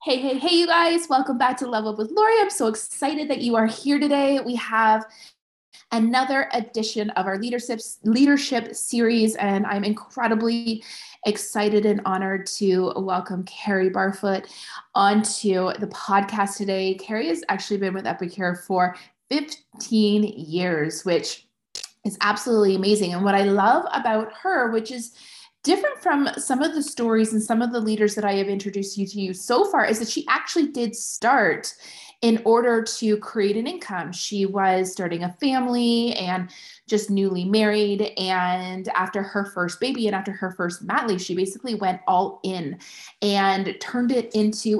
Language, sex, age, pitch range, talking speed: English, female, 20-39, 195-235 Hz, 165 wpm